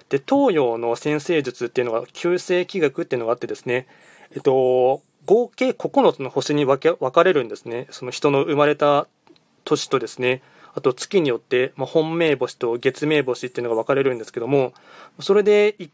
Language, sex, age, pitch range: Japanese, male, 20-39, 125-180 Hz